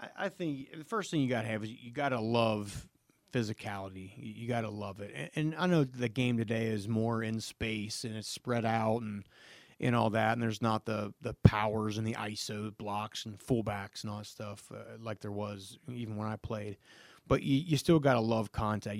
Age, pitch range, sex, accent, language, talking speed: 30-49, 105-125 Hz, male, American, English, 220 wpm